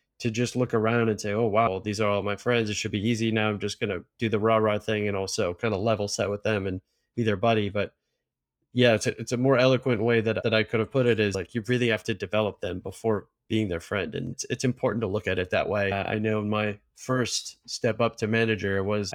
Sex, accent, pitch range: male, American, 105-120 Hz